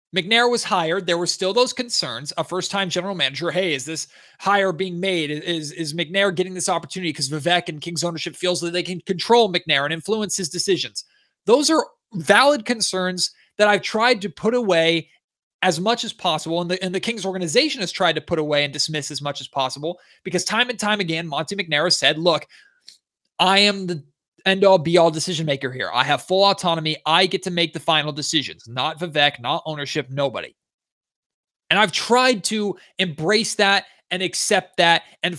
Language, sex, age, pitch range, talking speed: English, male, 20-39, 165-205 Hz, 190 wpm